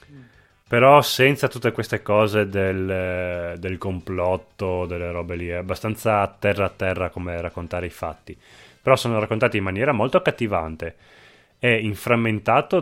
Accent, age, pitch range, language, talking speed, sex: native, 20-39, 90-110 Hz, Italian, 135 wpm, male